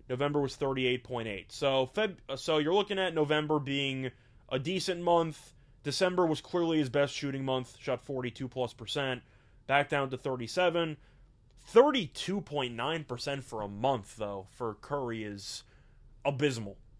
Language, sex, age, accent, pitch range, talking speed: English, male, 20-39, American, 120-150 Hz, 130 wpm